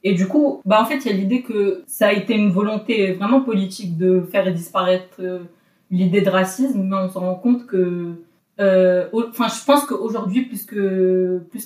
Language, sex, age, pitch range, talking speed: French, female, 20-39, 185-210 Hz, 200 wpm